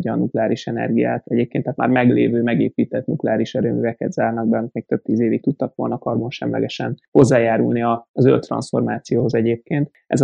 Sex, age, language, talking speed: male, 20-39, Hungarian, 145 wpm